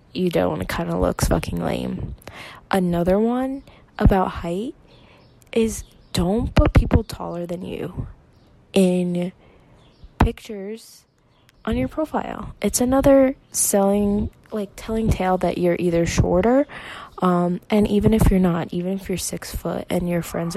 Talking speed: 135 wpm